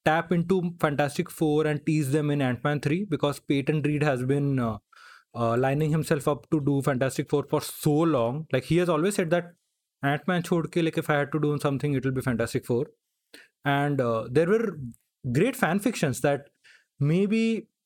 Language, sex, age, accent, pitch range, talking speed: English, male, 20-39, Indian, 135-170 Hz, 185 wpm